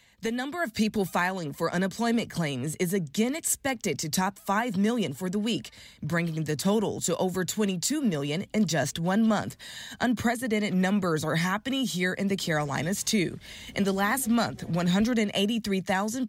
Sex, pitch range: female, 155-210 Hz